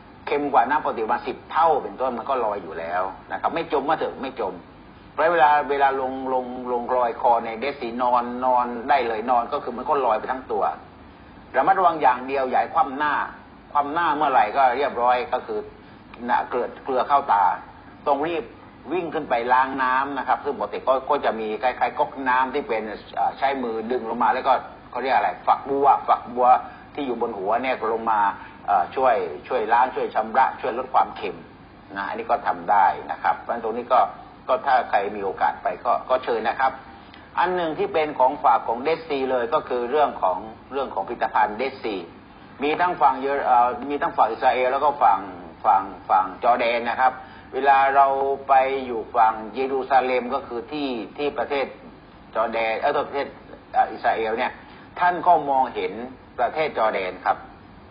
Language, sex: English, male